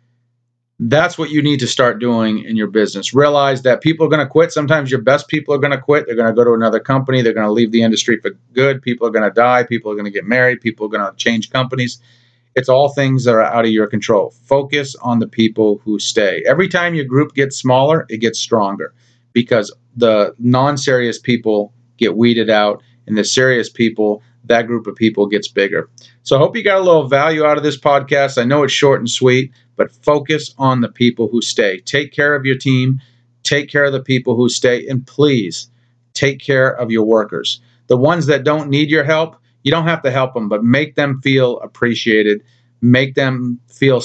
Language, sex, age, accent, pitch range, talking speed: English, male, 40-59, American, 120-140 Hz, 220 wpm